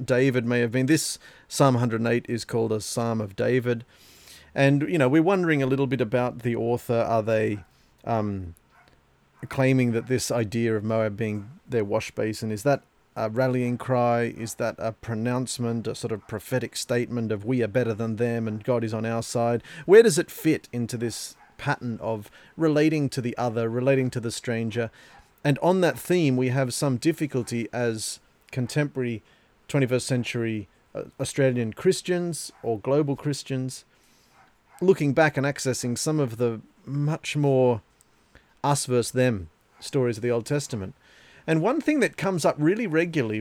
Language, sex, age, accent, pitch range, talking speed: English, male, 40-59, Australian, 115-145 Hz, 165 wpm